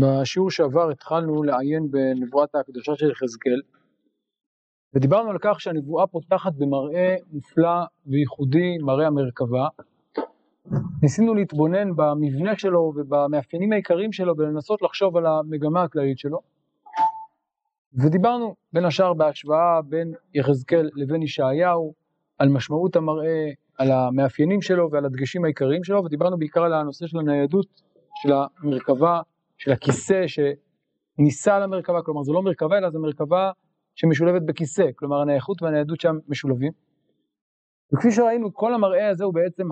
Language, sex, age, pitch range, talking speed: Hebrew, male, 40-59, 145-185 Hz, 125 wpm